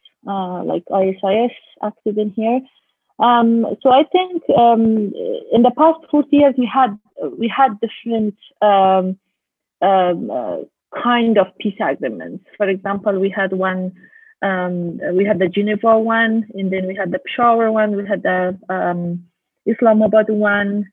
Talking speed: 145 wpm